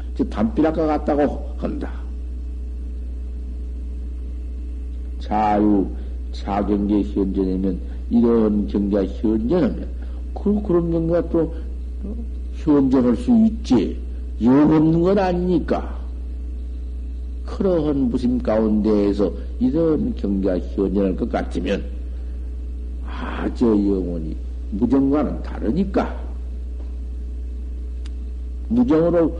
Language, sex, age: Korean, male, 60-79